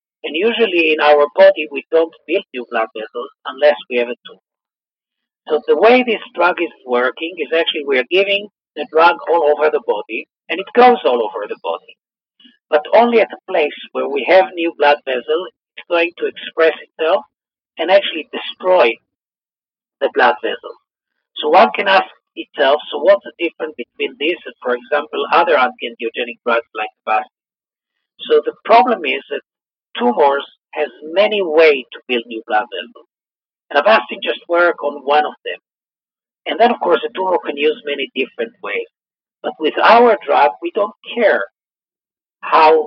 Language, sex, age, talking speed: English, male, 50-69, 170 wpm